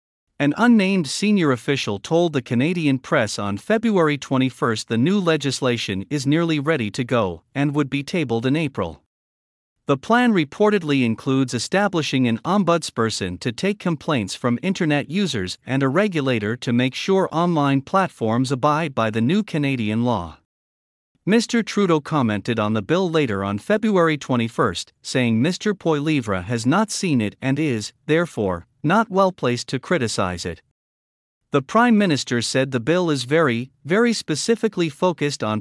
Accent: American